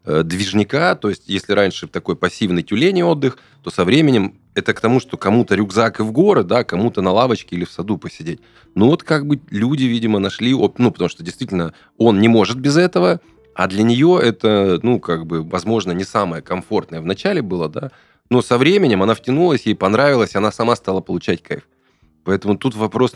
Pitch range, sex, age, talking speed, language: 90-125 Hz, male, 20-39, 195 wpm, Russian